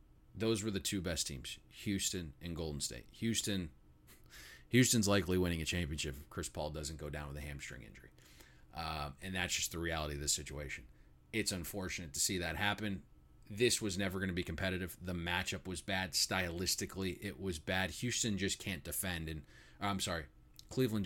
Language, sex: English, male